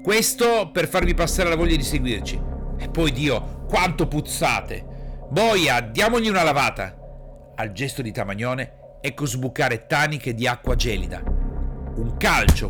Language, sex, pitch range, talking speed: Italian, male, 110-155 Hz, 135 wpm